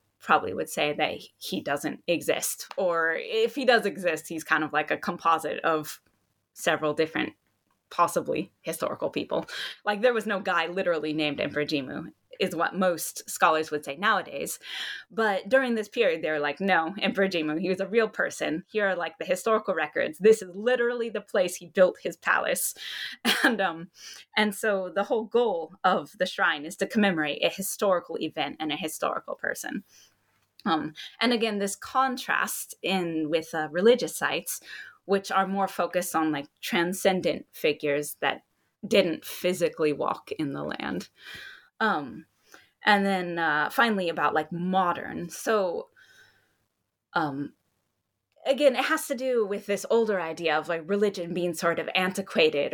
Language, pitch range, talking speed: English, 160-210 Hz, 160 wpm